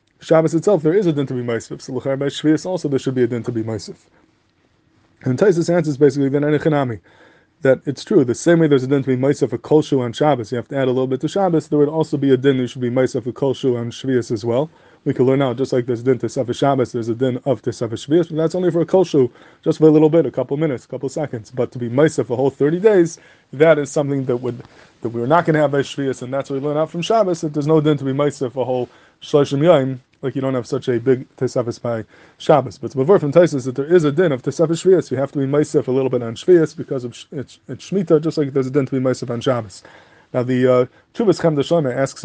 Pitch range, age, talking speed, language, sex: 125-150 Hz, 20-39, 285 wpm, English, male